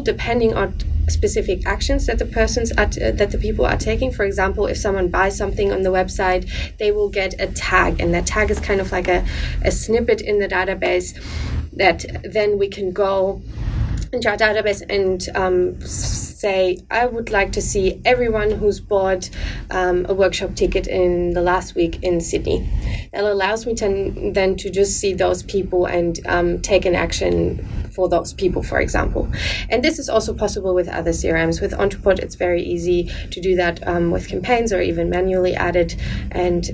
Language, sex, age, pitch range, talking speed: English, female, 20-39, 175-200 Hz, 185 wpm